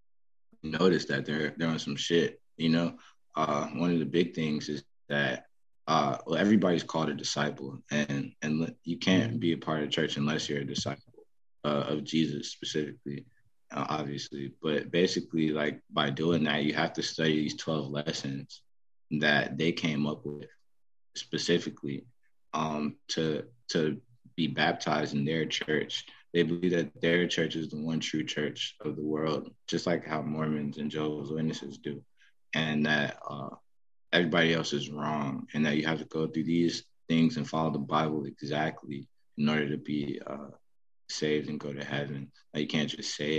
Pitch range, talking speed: 75-85 Hz, 175 wpm